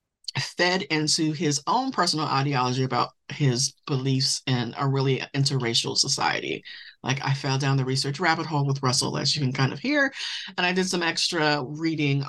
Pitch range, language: 135-180 Hz, English